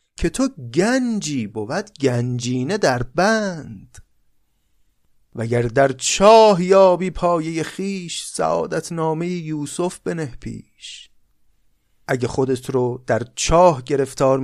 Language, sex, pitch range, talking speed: Persian, male, 125-175 Hz, 100 wpm